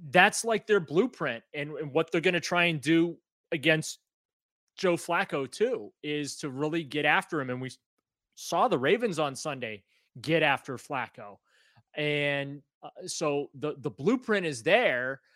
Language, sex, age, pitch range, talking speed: English, male, 30-49, 140-170 Hz, 160 wpm